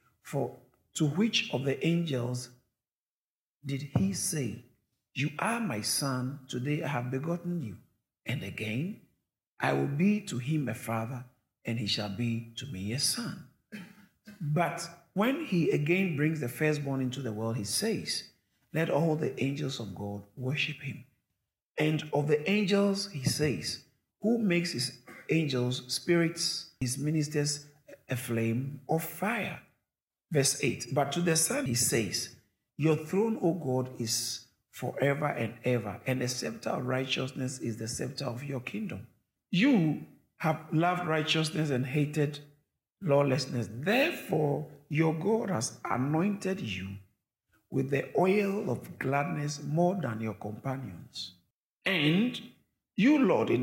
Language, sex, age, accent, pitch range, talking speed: English, male, 50-69, Nigerian, 125-165 Hz, 140 wpm